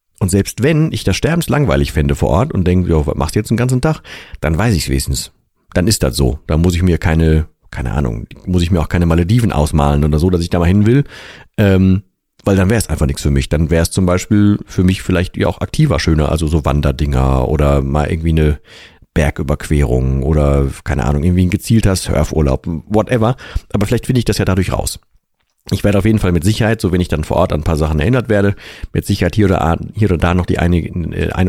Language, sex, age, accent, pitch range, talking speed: German, male, 40-59, German, 80-105 Hz, 235 wpm